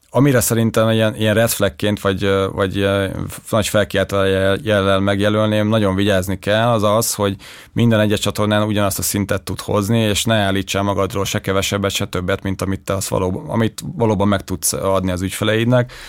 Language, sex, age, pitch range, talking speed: Hungarian, male, 30-49, 95-110 Hz, 165 wpm